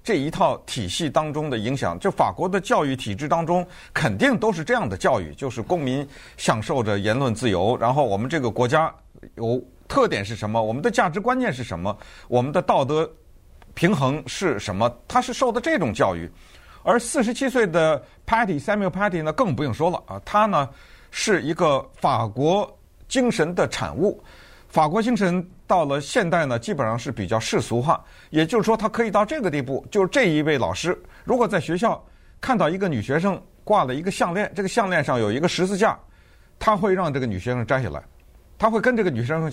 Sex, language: male, Chinese